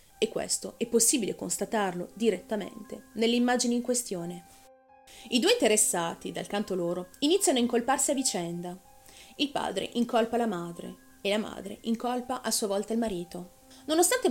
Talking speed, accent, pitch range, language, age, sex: 150 wpm, native, 185-255 Hz, Italian, 30-49, female